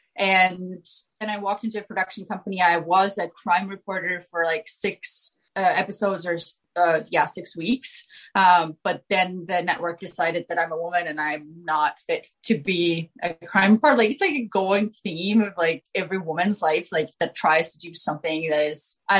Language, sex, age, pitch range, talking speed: English, female, 20-39, 175-235 Hz, 195 wpm